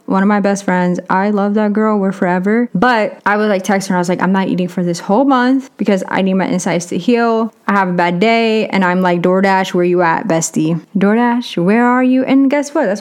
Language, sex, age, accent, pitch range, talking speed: English, female, 20-39, American, 185-230 Hz, 255 wpm